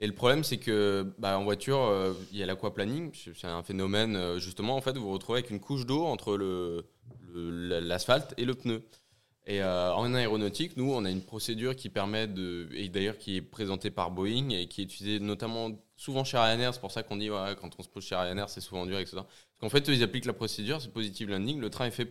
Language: French